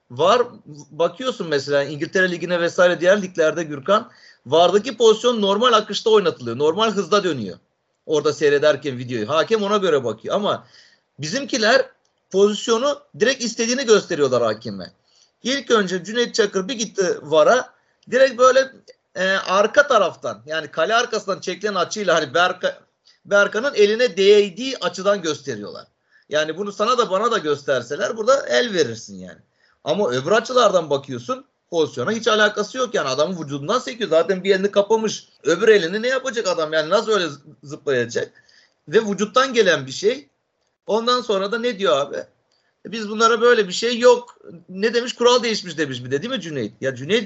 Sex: male